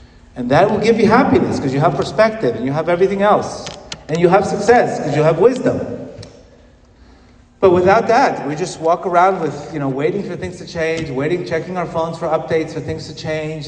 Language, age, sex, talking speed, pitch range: English, 40-59, male, 210 wpm, 120-150 Hz